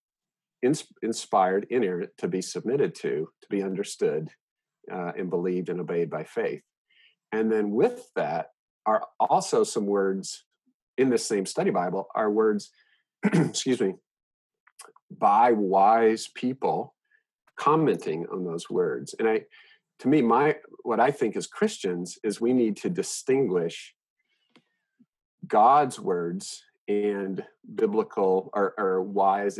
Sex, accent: male, American